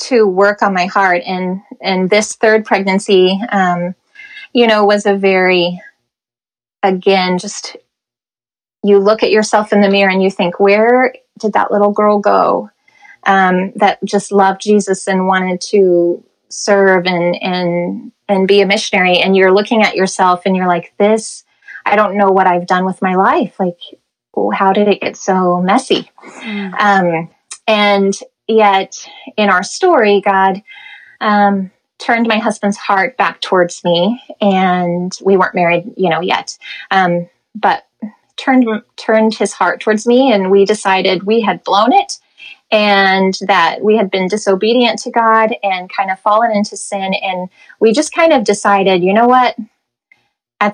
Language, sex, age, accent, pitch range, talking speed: English, female, 20-39, American, 190-220 Hz, 160 wpm